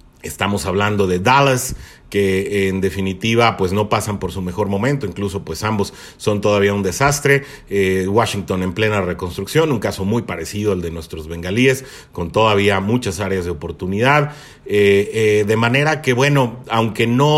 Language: Spanish